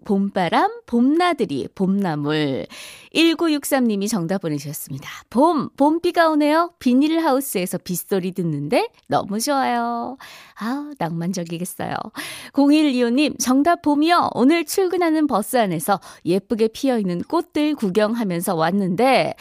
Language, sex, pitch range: Korean, female, 190-285 Hz